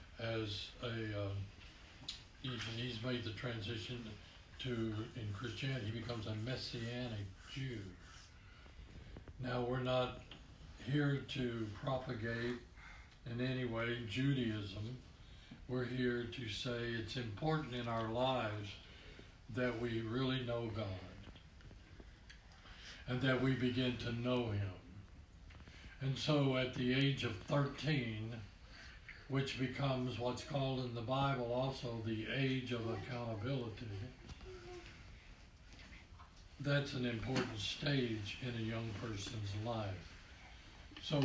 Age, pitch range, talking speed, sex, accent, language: 60-79, 100-130 Hz, 110 wpm, male, American, English